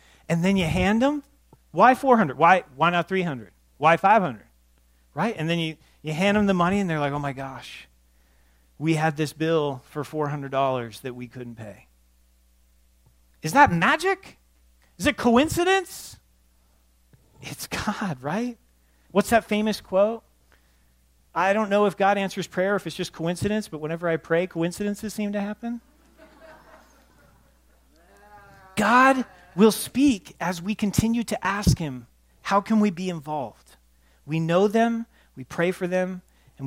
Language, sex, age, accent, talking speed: English, male, 40-59, American, 155 wpm